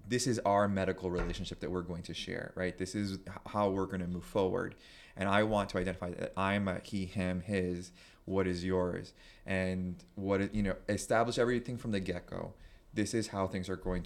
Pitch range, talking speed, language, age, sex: 95-115 Hz, 215 wpm, English, 30-49, male